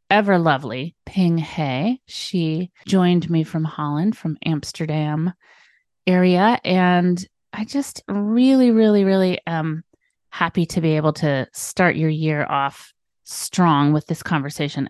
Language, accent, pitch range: English, American, 155-185 Hz